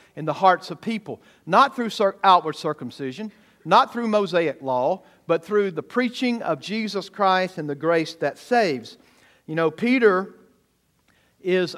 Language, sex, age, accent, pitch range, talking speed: English, male, 50-69, American, 160-215 Hz, 150 wpm